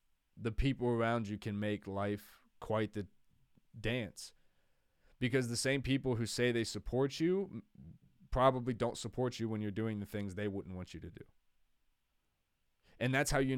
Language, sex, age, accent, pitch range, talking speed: English, male, 20-39, American, 105-125 Hz, 170 wpm